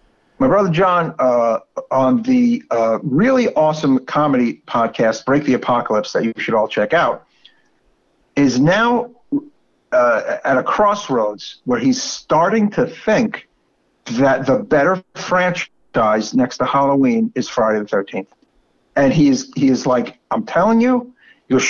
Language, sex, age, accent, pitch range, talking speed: English, male, 50-69, American, 130-215 Hz, 140 wpm